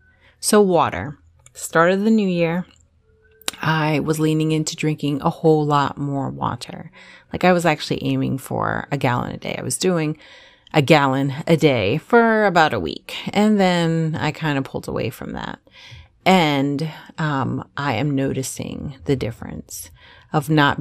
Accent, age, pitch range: American, 30-49, 135-165 Hz